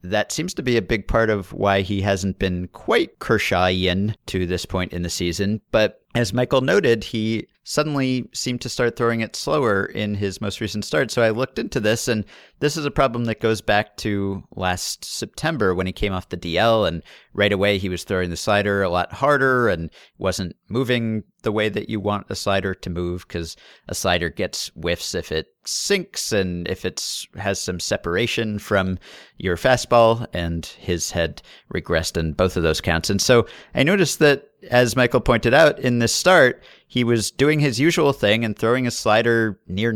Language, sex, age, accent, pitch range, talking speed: English, male, 40-59, American, 95-120 Hz, 195 wpm